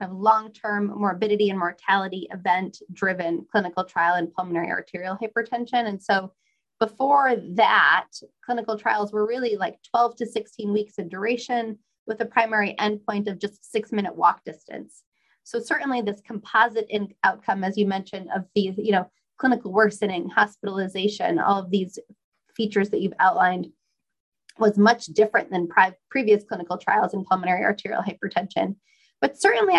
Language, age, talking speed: English, 20-39, 145 wpm